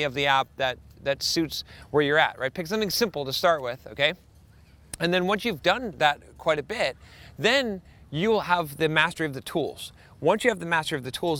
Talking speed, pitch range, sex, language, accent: 225 wpm, 140-180 Hz, male, English, American